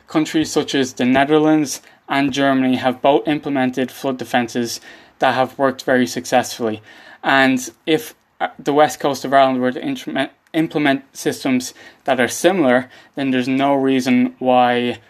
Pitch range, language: 125-150 Hz, English